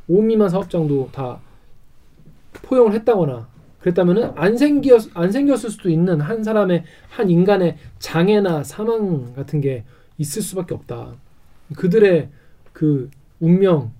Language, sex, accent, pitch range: Korean, male, native, 140-210 Hz